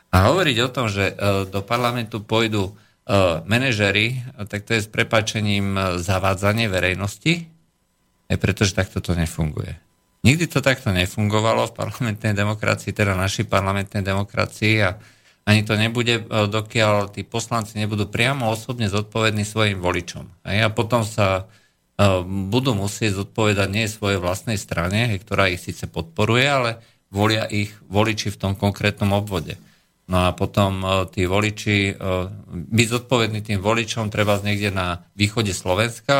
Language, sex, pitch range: Slovak, male, 100-115 Hz